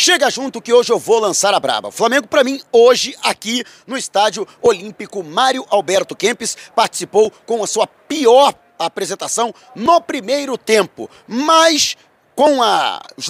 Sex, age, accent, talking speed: male, 40-59, Brazilian, 155 wpm